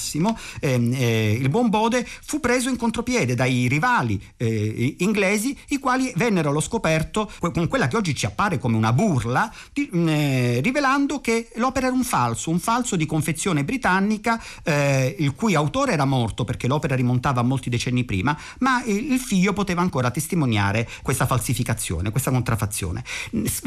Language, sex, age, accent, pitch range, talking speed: Italian, male, 50-69, native, 115-180 Hz, 155 wpm